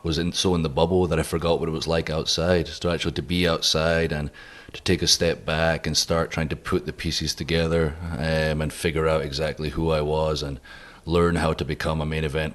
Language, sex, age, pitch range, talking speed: Hebrew, male, 30-49, 75-80 Hz, 235 wpm